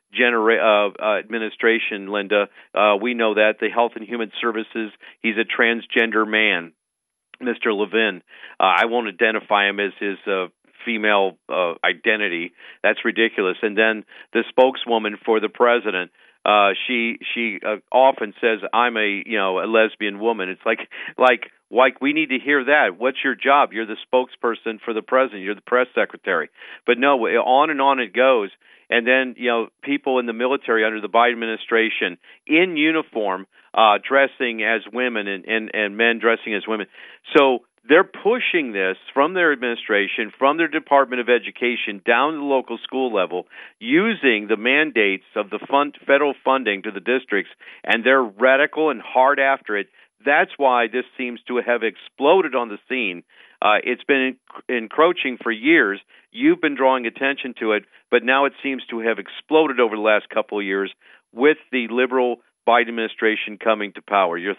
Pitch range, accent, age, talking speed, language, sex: 105-130 Hz, American, 50-69, 175 wpm, English, male